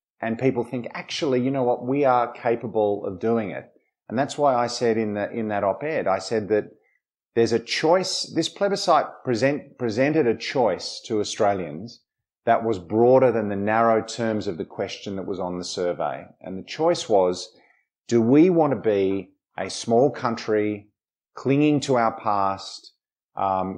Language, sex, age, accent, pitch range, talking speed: English, male, 30-49, Australian, 100-125 Hz, 175 wpm